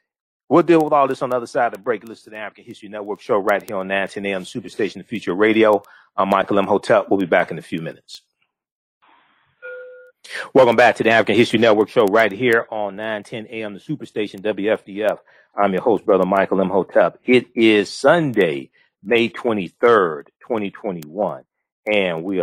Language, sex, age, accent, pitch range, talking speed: English, male, 40-59, American, 95-115 Hz, 180 wpm